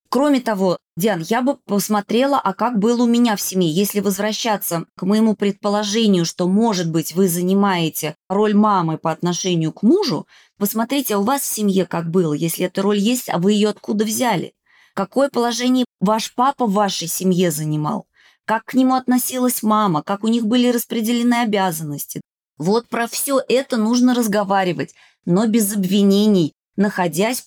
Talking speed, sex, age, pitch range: 160 wpm, female, 20-39, 185-230 Hz